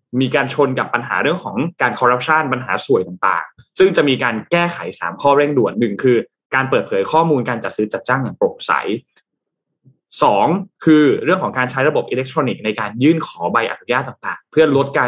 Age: 20-39